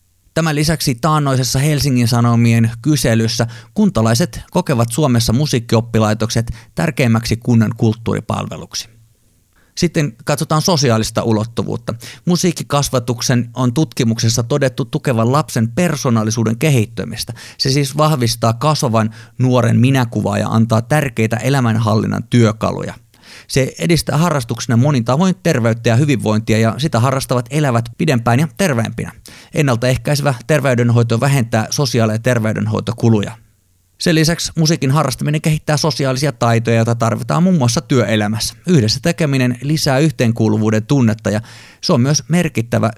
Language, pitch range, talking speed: Finnish, 115-150 Hz, 110 wpm